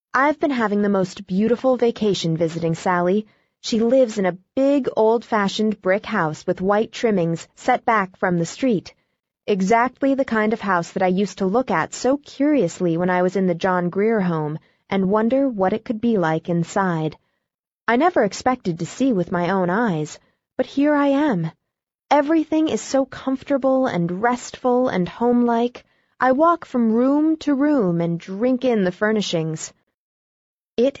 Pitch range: 185-235 Hz